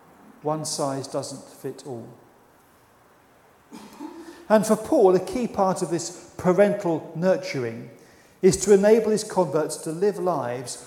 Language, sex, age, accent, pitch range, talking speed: English, male, 40-59, British, 155-195 Hz, 125 wpm